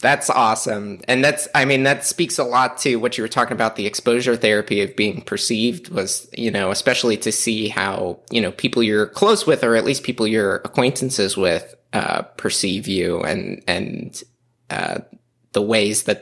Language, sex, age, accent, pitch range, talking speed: English, male, 20-39, American, 110-135 Hz, 190 wpm